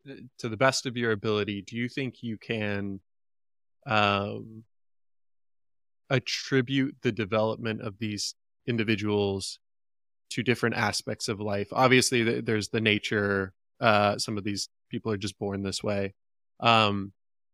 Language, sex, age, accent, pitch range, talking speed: English, male, 20-39, American, 100-115 Hz, 130 wpm